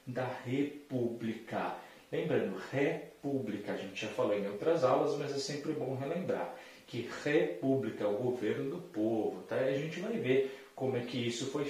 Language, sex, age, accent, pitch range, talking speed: Portuguese, male, 40-59, Brazilian, 115-160 Hz, 170 wpm